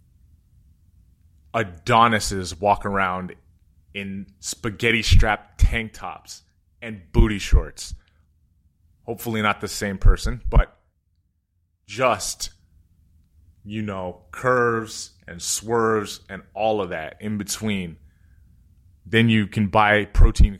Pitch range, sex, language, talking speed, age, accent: 85-110 Hz, male, English, 95 wpm, 30-49, American